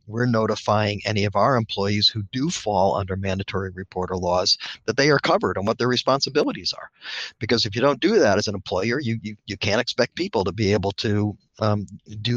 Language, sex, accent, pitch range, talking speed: English, male, American, 100-120 Hz, 210 wpm